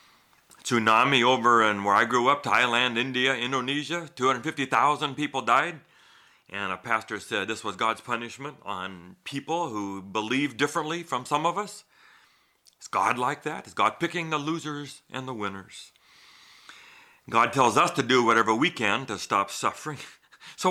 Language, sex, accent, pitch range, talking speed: English, male, American, 100-145 Hz, 155 wpm